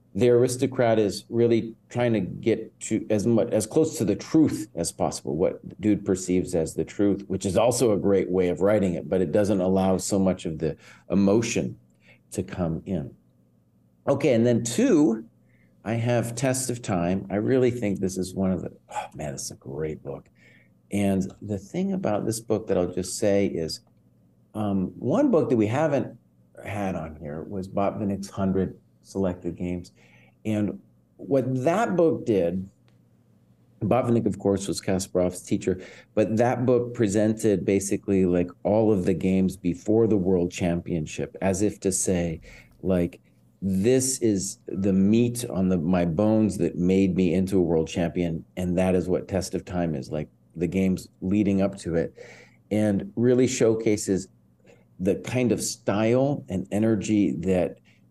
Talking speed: 170 wpm